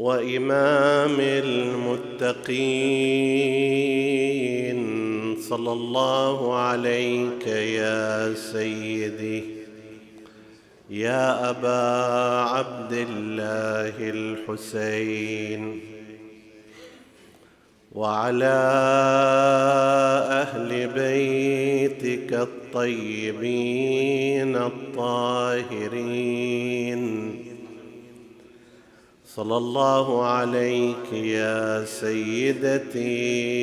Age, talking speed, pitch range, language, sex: 50-69, 40 wpm, 110-130 Hz, Arabic, male